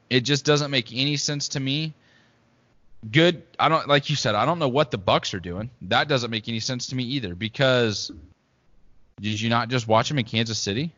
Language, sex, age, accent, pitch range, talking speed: English, male, 20-39, American, 110-130 Hz, 220 wpm